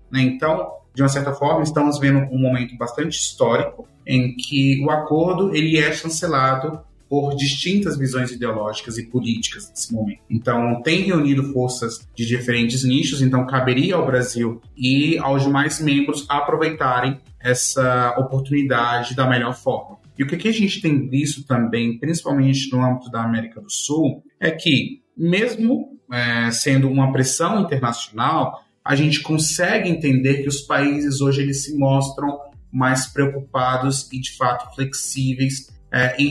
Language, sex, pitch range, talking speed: Portuguese, male, 120-145 Hz, 145 wpm